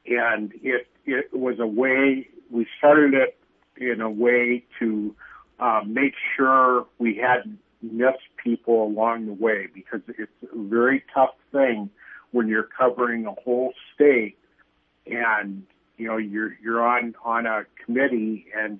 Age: 60-79